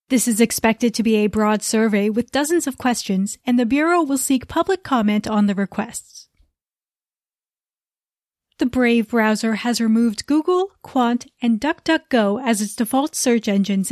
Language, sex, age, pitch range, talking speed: English, female, 30-49, 215-260 Hz, 155 wpm